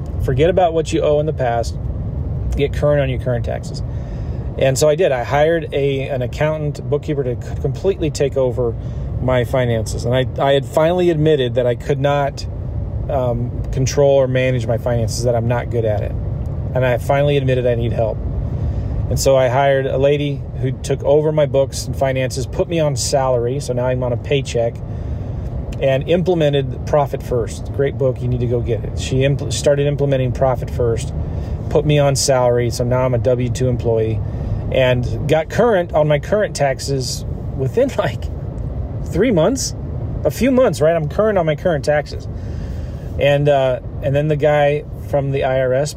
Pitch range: 115-140 Hz